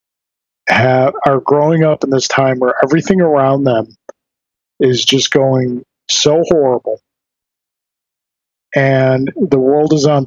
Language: English